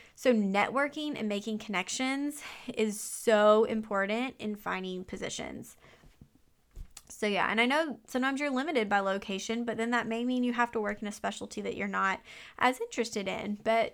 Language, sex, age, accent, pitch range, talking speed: English, female, 20-39, American, 195-230 Hz, 170 wpm